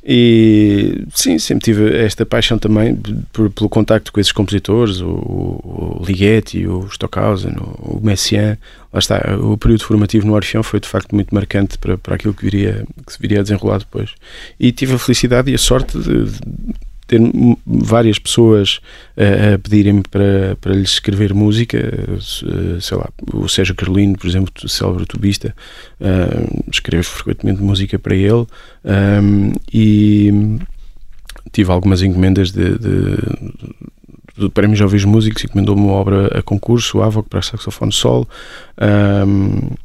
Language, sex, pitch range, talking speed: Portuguese, male, 100-110 Hz, 150 wpm